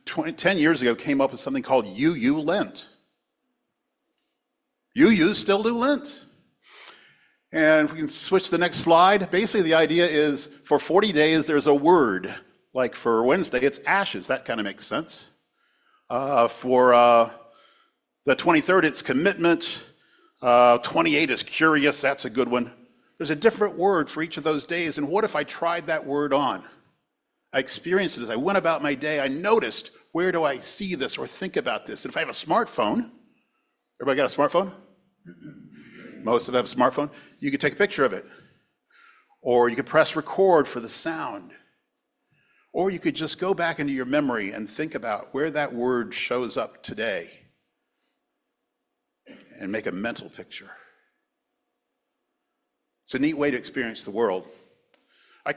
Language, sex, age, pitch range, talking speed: English, male, 50-69, 140-190 Hz, 170 wpm